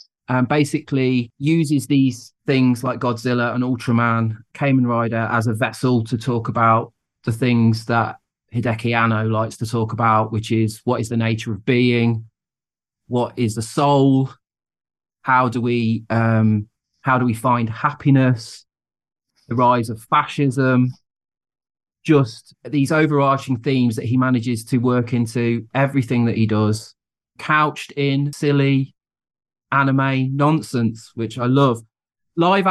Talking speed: 140 wpm